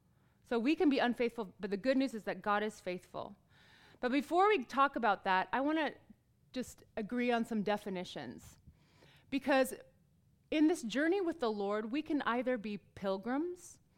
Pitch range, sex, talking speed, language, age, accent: 195-250 Hz, female, 170 wpm, English, 30-49, American